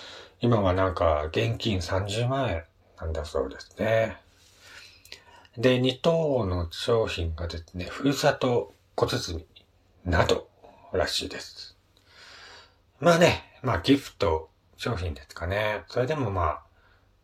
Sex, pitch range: male, 90-115 Hz